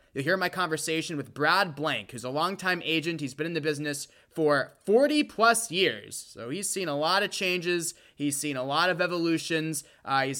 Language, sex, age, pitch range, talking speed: English, male, 20-39, 130-180 Hz, 195 wpm